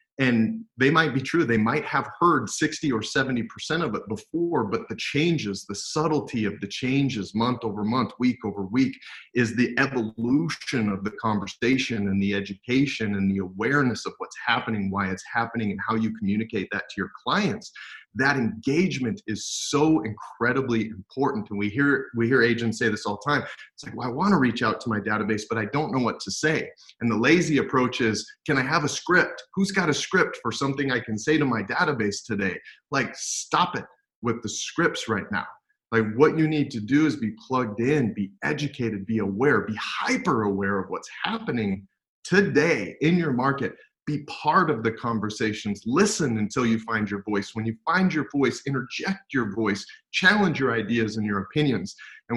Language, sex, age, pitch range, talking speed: English, male, 30-49, 105-140 Hz, 195 wpm